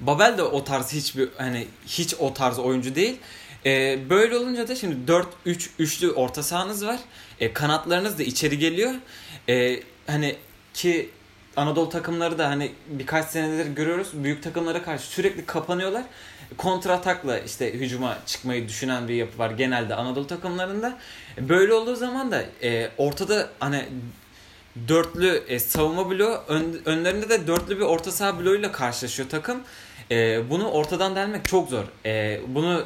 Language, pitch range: Turkish, 130-175 Hz